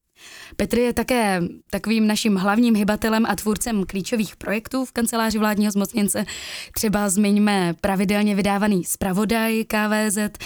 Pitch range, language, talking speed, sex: 190-225 Hz, Czech, 120 wpm, female